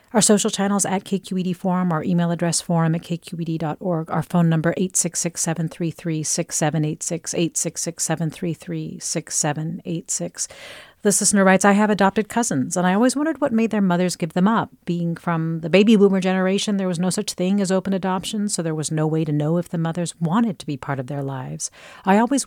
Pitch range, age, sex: 160-195 Hz, 40-59, female